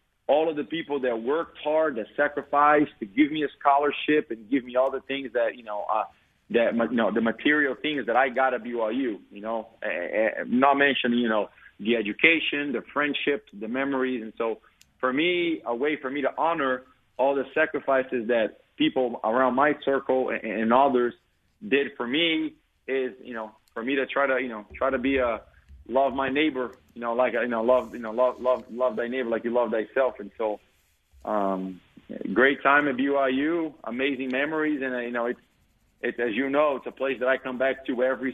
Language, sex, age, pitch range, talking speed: English, male, 30-49, 115-140 Hz, 205 wpm